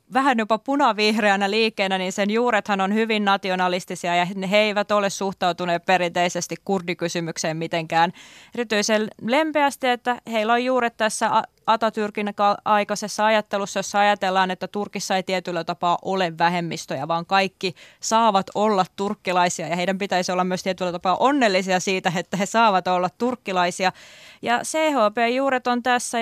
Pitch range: 180-210 Hz